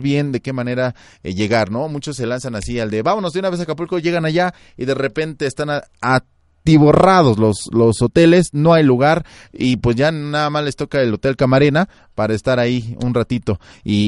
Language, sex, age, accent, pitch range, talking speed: Spanish, male, 30-49, Mexican, 110-145 Hz, 210 wpm